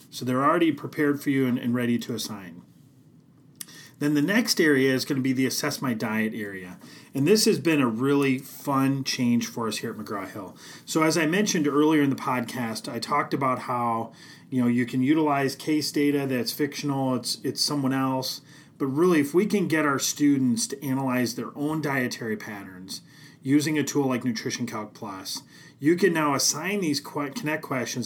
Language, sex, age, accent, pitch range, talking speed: English, male, 30-49, American, 125-150 Hz, 195 wpm